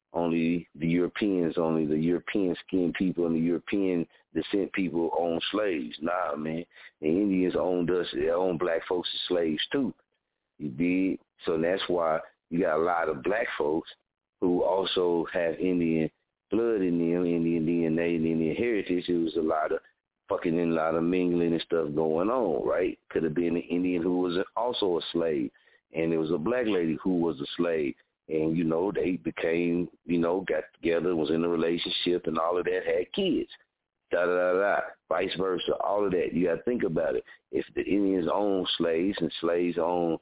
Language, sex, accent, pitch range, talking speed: English, male, American, 85-100 Hz, 185 wpm